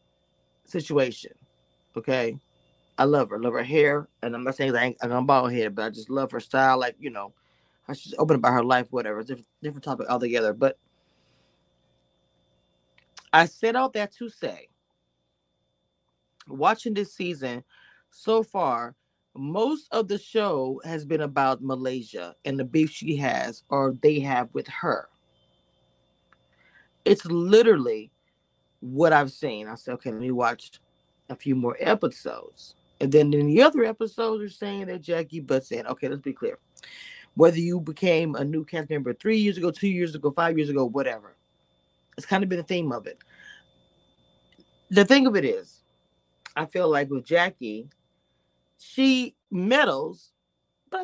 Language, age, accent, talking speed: English, 30-49, American, 165 wpm